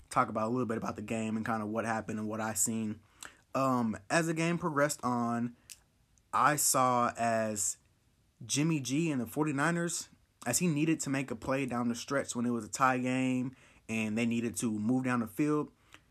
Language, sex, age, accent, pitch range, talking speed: English, male, 20-39, American, 115-145 Hz, 205 wpm